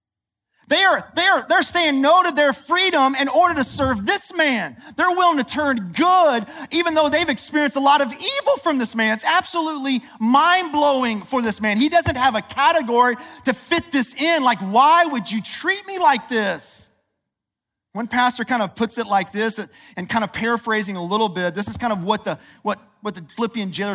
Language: English